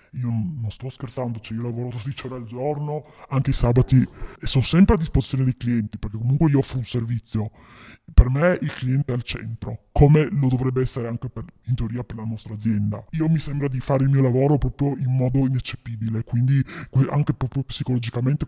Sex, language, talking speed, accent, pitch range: female, Italian, 195 wpm, native, 120-145 Hz